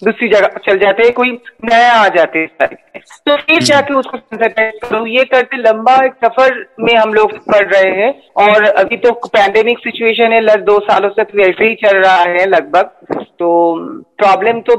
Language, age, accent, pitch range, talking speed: Hindi, 40-59, native, 205-255 Hz, 185 wpm